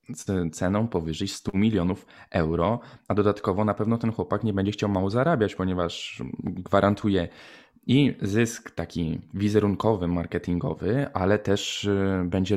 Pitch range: 95-115 Hz